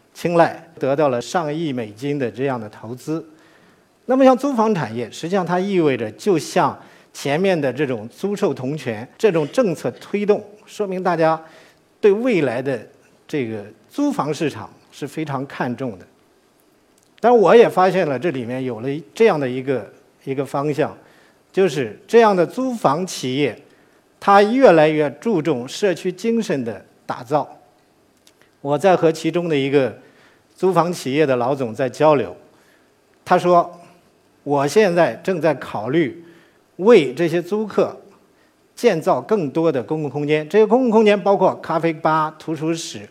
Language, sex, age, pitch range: Chinese, male, 50-69, 140-200 Hz